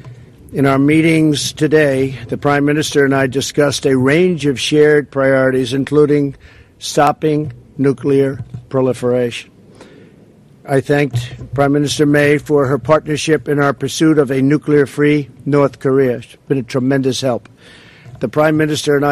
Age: 50-69